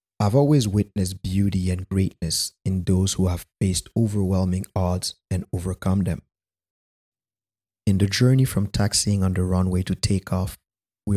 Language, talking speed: English, 145 wpm